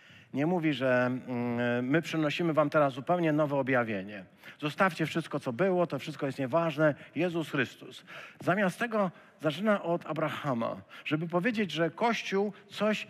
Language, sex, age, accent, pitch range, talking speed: Polish, male, 50-69, native, 150-190 Hz, 135 wpm